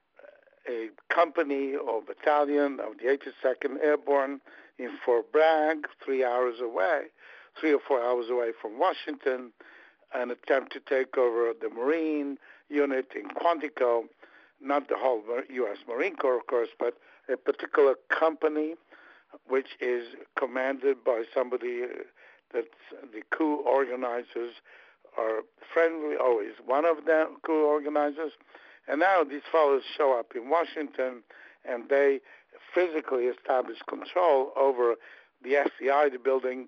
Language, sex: English, male